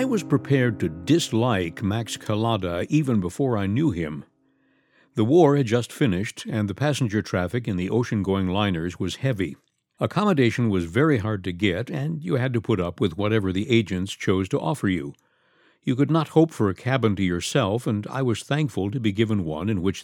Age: 60-79